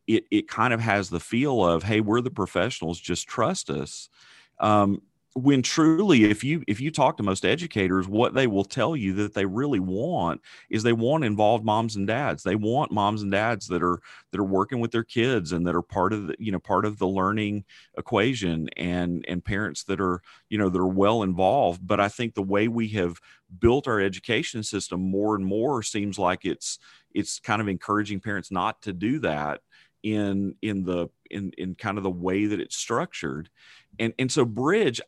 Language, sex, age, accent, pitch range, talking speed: English, male, 40-59, American, 90-110 Hz, 205 wpm